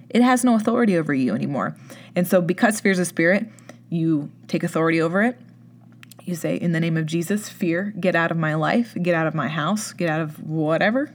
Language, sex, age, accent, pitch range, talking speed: English, female, 20-39, American, 170-210 Hz, 220 wpm